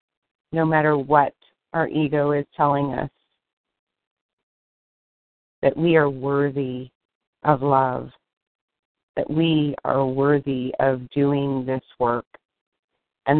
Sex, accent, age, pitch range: female, American, 30-49, 135-150 Hz